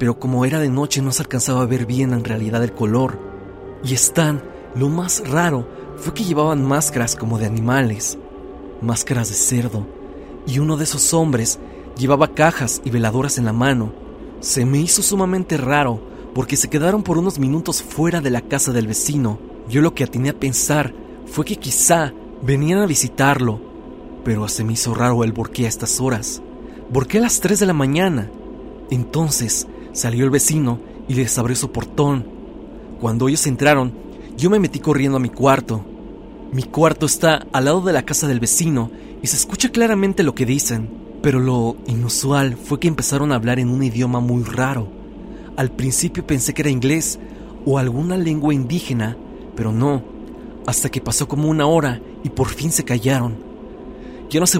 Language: Spanish